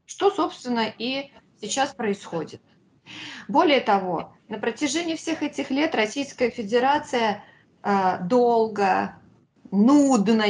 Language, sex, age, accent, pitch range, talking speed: Russian, female, 30-49, native, 195-255 Hz, 90 wpm